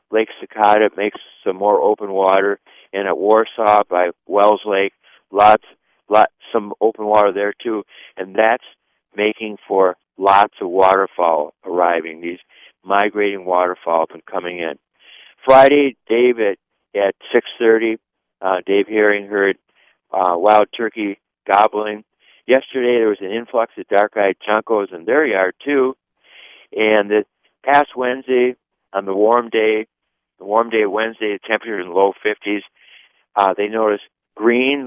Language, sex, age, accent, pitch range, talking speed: English, male, 60-79, American, 95-120 Hz, 140 wpm